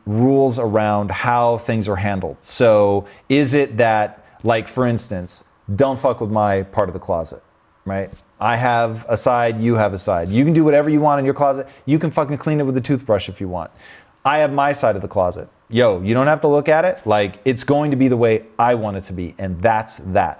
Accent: American